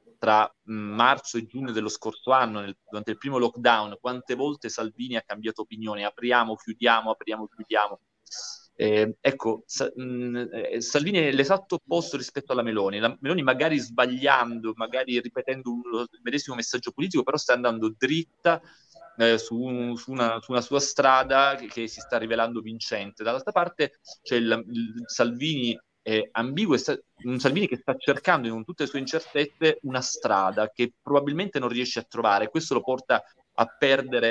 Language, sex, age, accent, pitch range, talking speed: Italian, male, 30-49, native, 110-140 Hz, 165 wpm